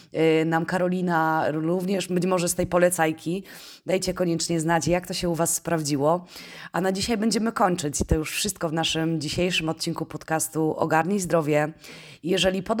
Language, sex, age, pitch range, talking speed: Polish, female, 20-39, 160-180 Hz, 155 wpm